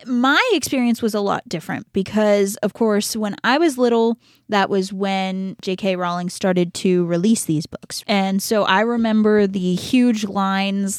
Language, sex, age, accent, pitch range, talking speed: English, female, 20-39, American, 180-230 Hz, 165 wpm